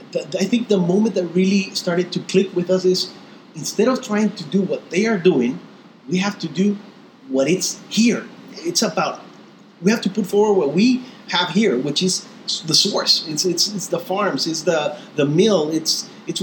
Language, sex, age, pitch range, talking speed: English, male, 30-49, 140-200 Hz, 195 wpm